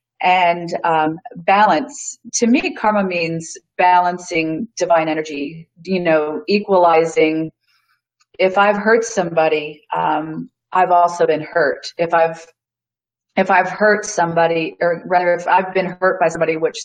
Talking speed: 130 wpm